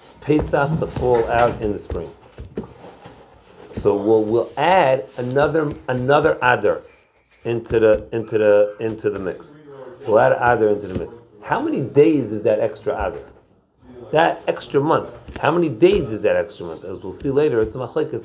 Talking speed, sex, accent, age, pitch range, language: 170 wpm, male, American, 40-59, 105-155 Hz, English